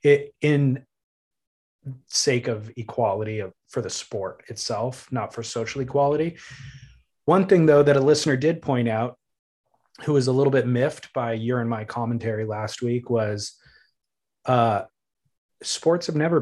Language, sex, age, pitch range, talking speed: English, male, 30-49, 120-150 Hz, 145 wpm